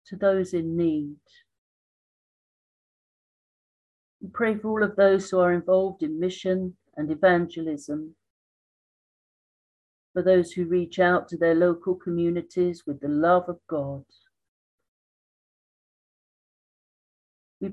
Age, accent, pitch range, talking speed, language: 50-69, British, 150-195 Hz, 110 wpm, English